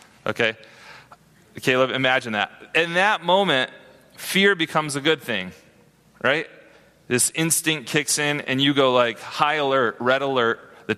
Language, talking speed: English, 140 wpm